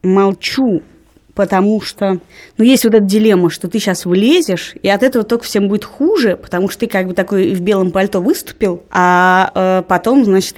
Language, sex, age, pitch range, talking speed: Russian, female, 20-39, 190-300 Hz, 180 wpm